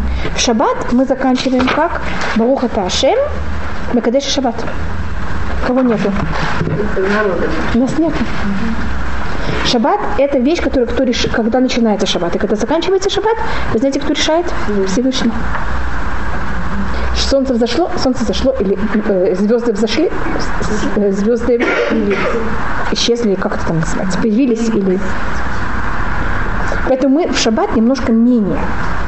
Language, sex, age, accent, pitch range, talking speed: Russian, female, 30-49, native, 200-265 Hz, 105 wpm